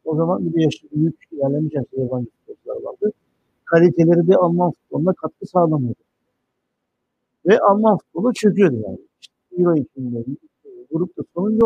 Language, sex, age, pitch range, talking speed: Turkish, male, 60-79, 150-210 Hz, 125 wpm